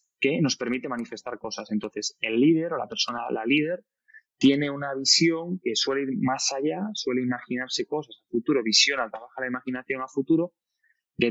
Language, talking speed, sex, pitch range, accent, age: Spanish, 175 wpm, male, 115-150 Hz, Spanish, 20-39